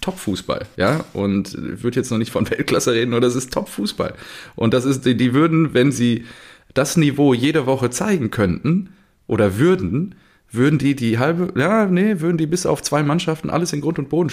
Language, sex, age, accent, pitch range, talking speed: German, male, 30-49, German, 100-140 Hz, 195 wpm